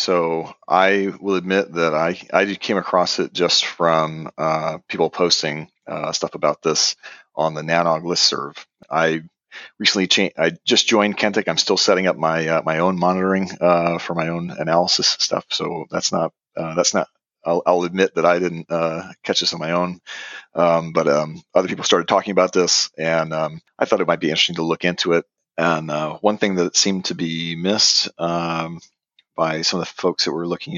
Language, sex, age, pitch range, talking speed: English, male, 40-59, 80-90 Hz, 200 wpm